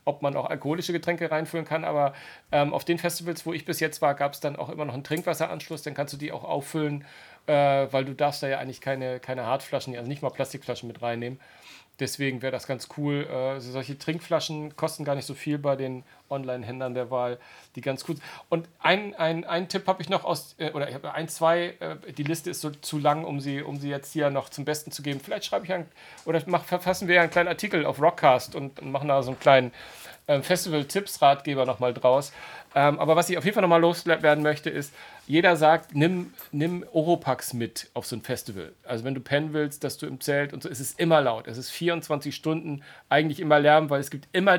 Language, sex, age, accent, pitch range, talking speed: German, male, 40-59, German, 135-165 Hz, 225 wpm